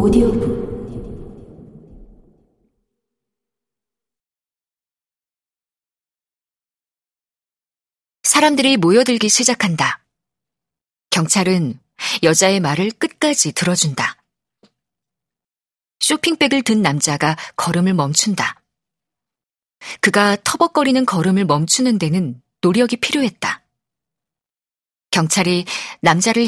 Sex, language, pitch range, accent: female, Korean, 165-230 Hz, native